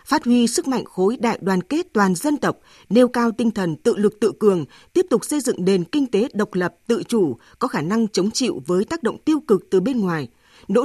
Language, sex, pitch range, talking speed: Vietnamese, female, 190-260 Hz, 245 wpm